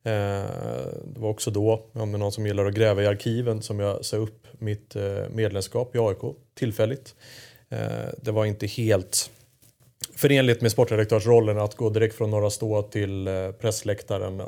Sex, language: male, Swedish